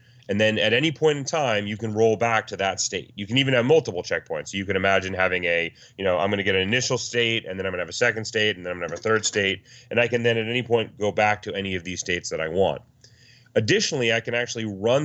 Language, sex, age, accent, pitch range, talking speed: English, male, 30-49, American, 95-120 Hz, 285 wpm